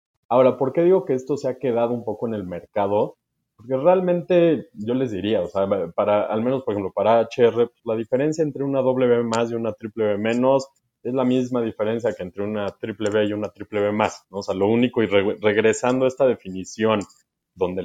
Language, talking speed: Spanish, 205 wpm